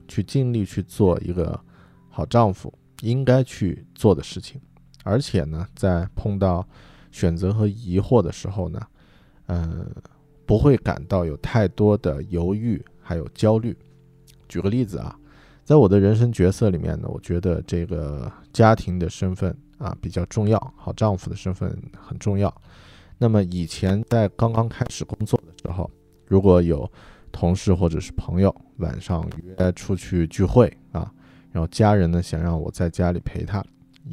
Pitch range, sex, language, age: 90-115 Hz, male, Chinese, 20-39